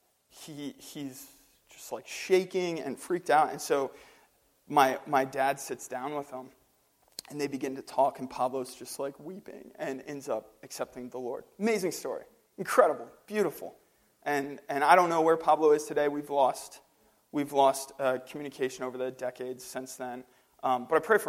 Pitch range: 135-160 Hz